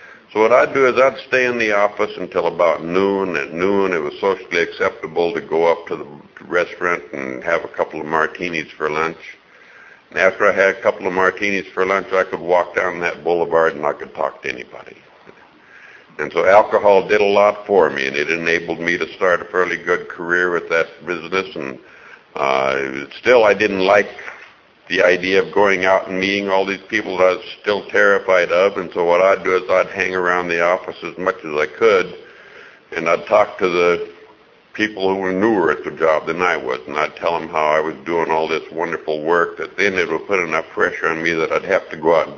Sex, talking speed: male, 220 wpm